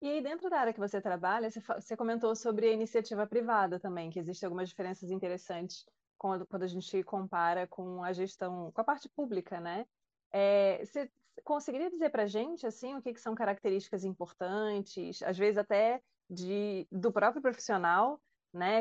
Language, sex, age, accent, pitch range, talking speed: Portuguese, female, 20-39, Brazilian, 185-230 Hz, 170 wpm